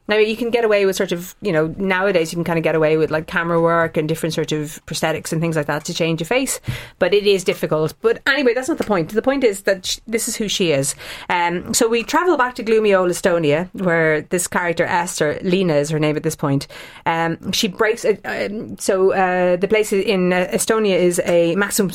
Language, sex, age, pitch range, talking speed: English, female, 30-49, 155-195 Hz, 245 wpm